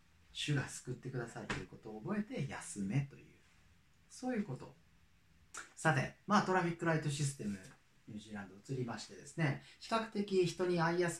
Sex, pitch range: male, 100-145 Hz